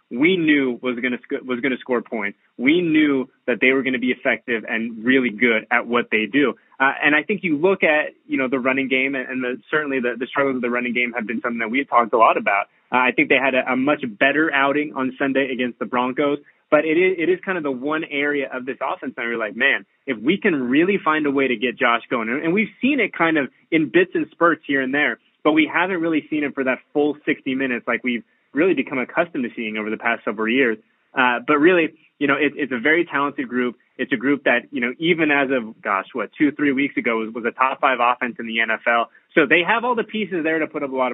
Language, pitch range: English, 125-155 Hz